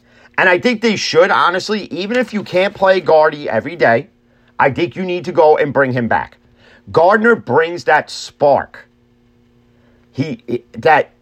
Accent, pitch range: American, 120-175 Hz